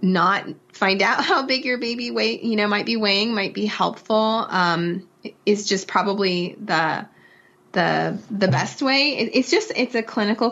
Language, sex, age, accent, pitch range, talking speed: English, female, 30-49, American, 180-220 Hz, 175 wpm